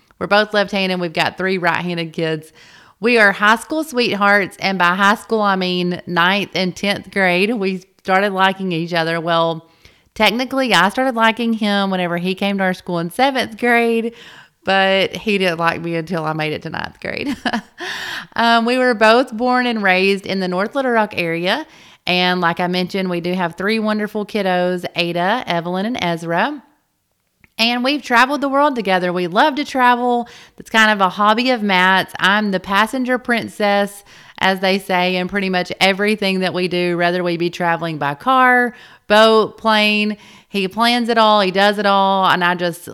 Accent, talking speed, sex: American, 185 wpm, female